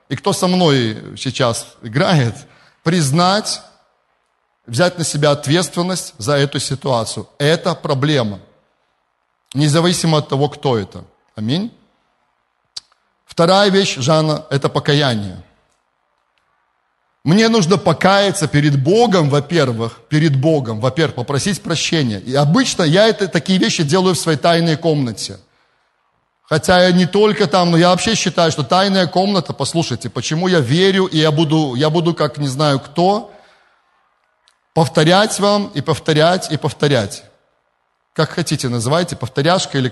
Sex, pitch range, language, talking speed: male, 120-170 Hz, Russian, 130 wpm